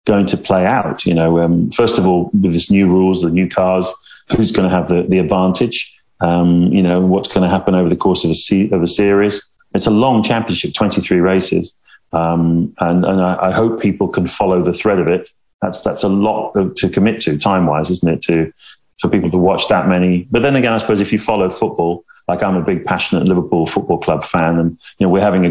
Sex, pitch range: male, 85-100 Hz